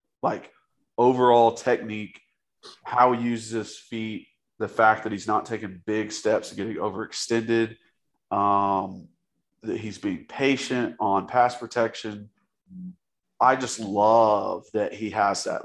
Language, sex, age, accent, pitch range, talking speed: English, male, 30-49, American, 105-130 Hz, 130 wpm